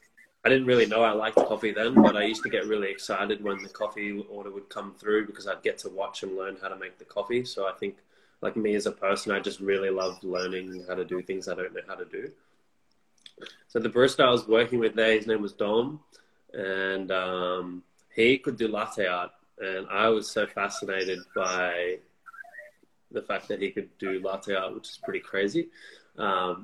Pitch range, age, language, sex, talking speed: 95-120 Hz, 20-39, English, male, 215 wpm